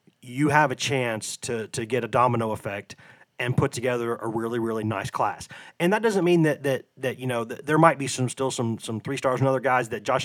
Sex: male